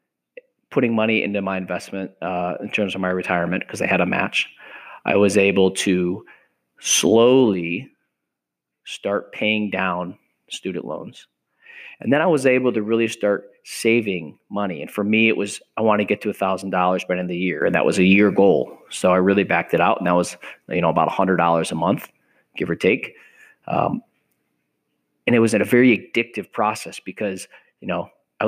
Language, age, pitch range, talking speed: English, 30-49, 90-110 Hz, 195 wpm